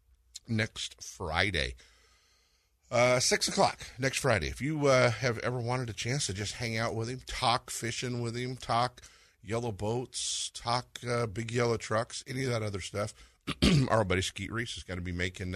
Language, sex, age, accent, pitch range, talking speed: English, male, 50-69, American, 80-120 Hz, 180 wpm